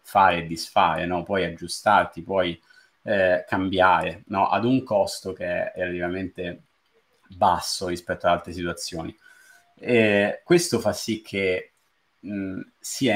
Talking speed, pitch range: 130 wpm, 90-115 Hz